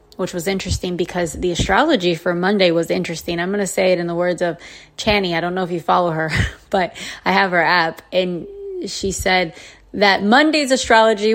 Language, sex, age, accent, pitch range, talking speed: English, female, 20-39, American, 170-215 Hz, 200 wpm